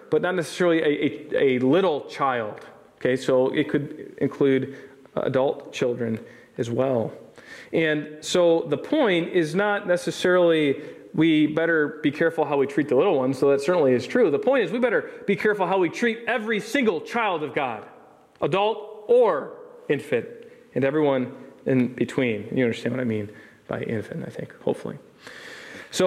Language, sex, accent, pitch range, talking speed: English, male, American, 150-225 Hz, 165 wpm